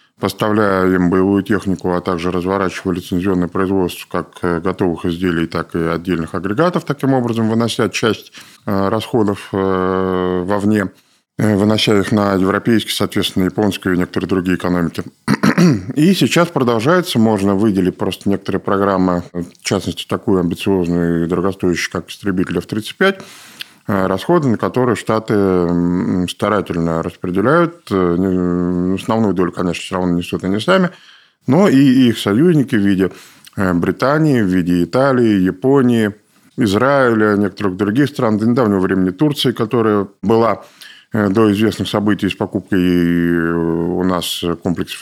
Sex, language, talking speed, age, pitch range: male, Russian, 125 wpm, 20-39, 90-115 Hz